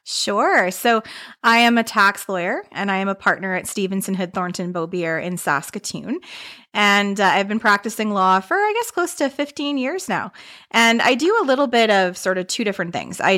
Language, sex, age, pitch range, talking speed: English, female, 20-39, 175-220 Hz, 205 wpm